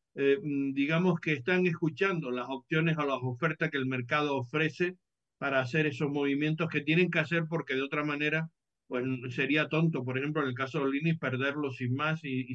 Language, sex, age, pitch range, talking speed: English, male, 60-79, 130-155 Hz, 195 wpm